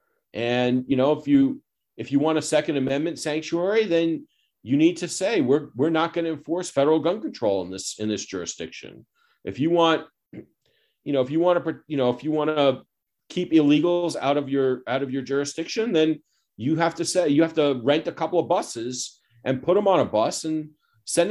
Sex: male